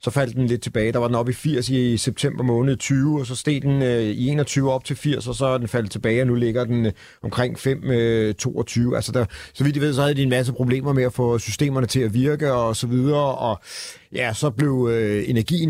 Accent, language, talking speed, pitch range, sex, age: native, Danish, 250 wpm, 115-140 Hz, male, 40-59